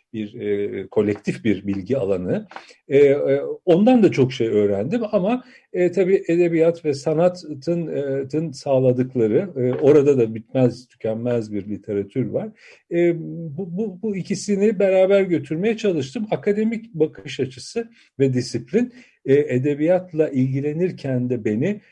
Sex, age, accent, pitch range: male, 50-69, native, 120-185 Hz